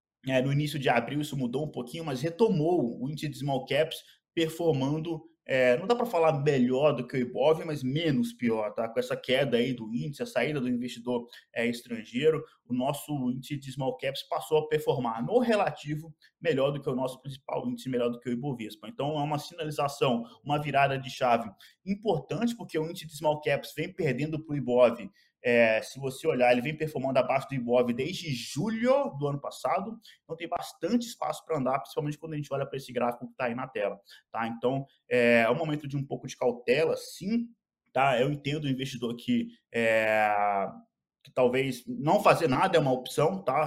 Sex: male